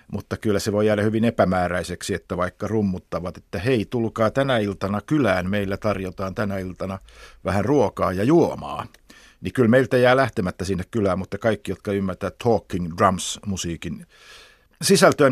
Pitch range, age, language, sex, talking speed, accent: 95-120 Hz, 50-69, Finnish, male, 150 wpm, native